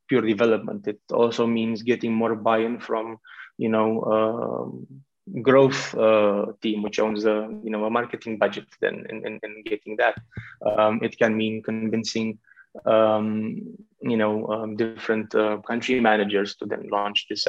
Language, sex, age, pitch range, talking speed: English, male, 20-39, 110-125 Hz, 150 wpm